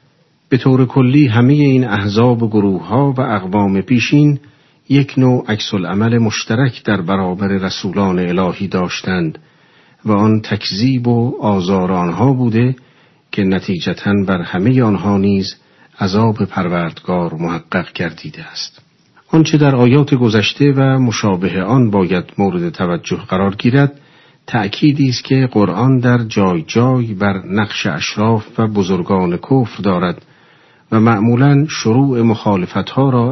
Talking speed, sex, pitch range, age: 130 wpm, male, 100-130 Hz, 50-69